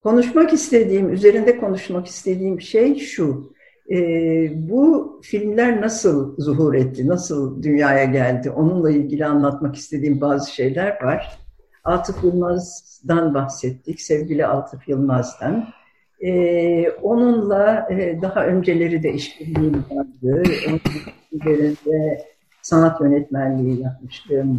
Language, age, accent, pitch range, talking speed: Turkish, 60-79, native, 140-210 Hz, 100 wpm